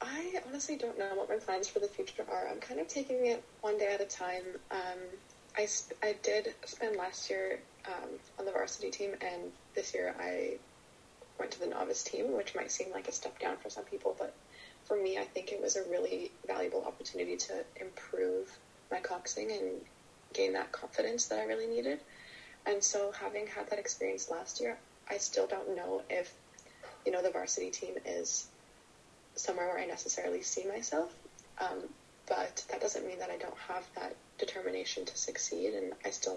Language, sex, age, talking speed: English, female, 20-39, 190 wpm